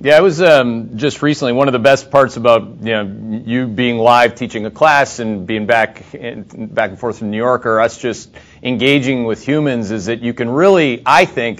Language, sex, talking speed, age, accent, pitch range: English, male, 220 wpm, 40-59, American, 120-140 Hz